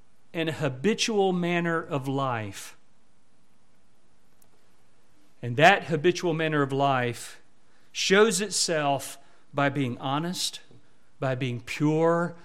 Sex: male